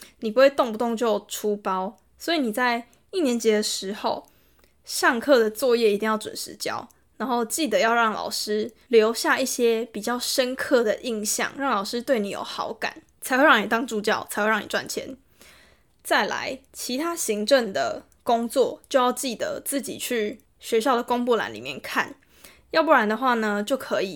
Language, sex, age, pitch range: Chinese, female, 10-29, 215-270 Hz